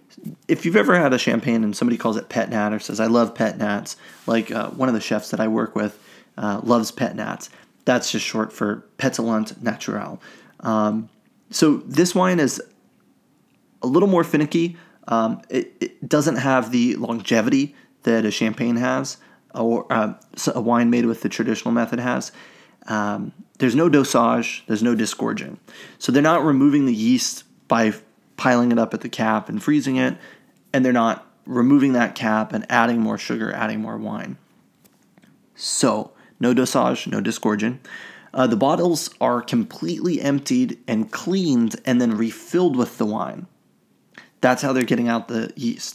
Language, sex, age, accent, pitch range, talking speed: English, male, 30-49, American, 110-140 Hz, 170 wpm